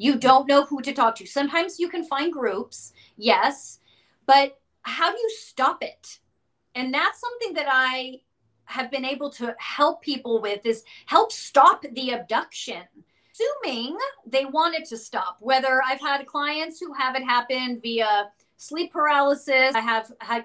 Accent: American